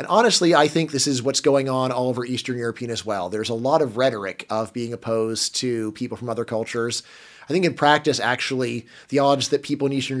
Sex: male